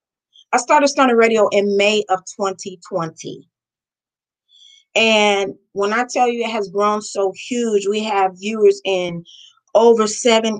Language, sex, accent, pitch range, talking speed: English, female, American, 200-245 Hz, 135 wpm